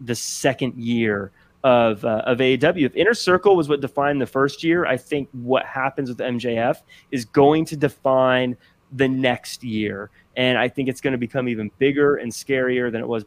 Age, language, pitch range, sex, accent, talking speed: 30-49, English, 120-165 Hz, male, American, 195 wpm